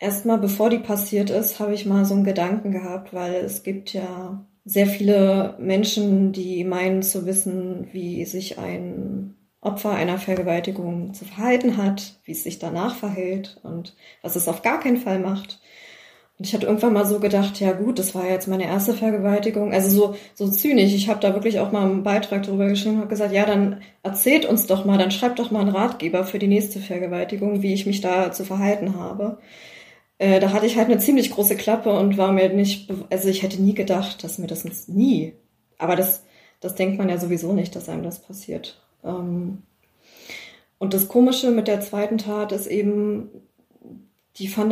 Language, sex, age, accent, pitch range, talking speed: German, female, 20-39, German, 190-210 Hz, 195 wpm